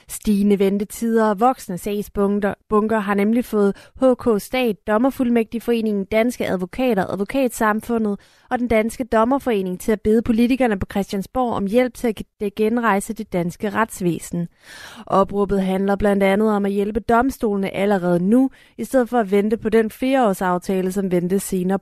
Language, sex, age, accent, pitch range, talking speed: Danish, female, 30-49, native, 195-230 Hz, 150 wpm